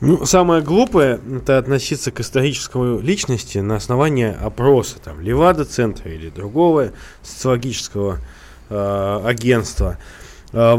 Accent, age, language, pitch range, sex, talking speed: native, 20-39, Russian, 115-165 Hz, male, 110 wpm